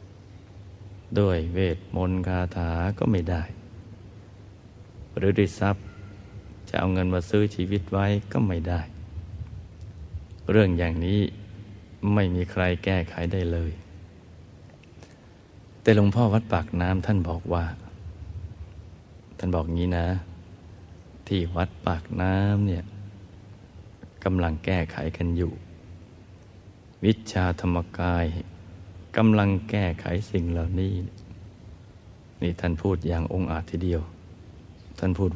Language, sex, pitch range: Thai, male, 85-100 Hz